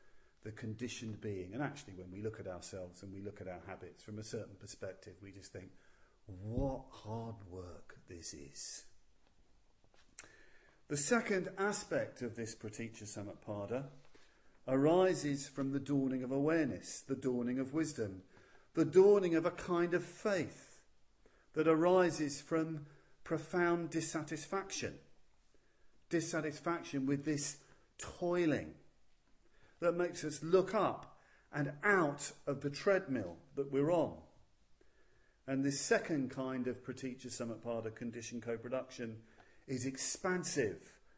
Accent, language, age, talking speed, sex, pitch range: British, English, 40-59, 125 wpm, male, 115-155 Hz